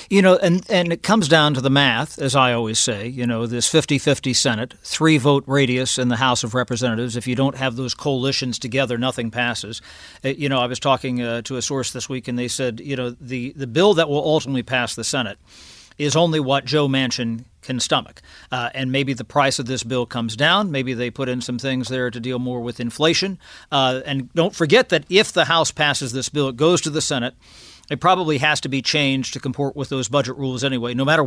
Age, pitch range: 50-69, 125-155 Hz